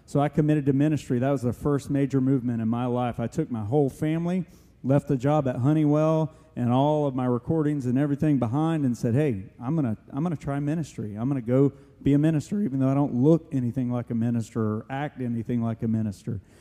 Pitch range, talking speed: 125-150 Hz, 225 wpm